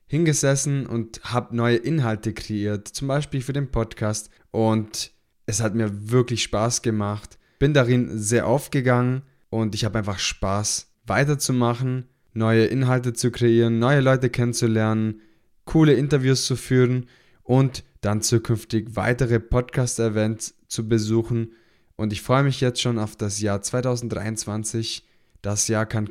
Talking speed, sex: 135 wpm, male